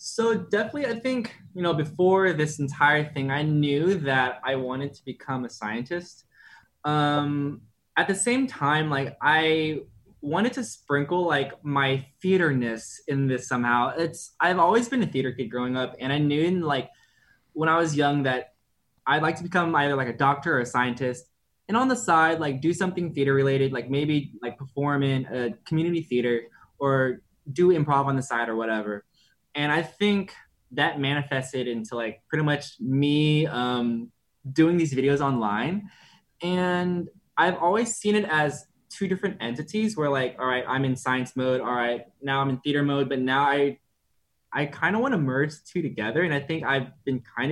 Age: 10-29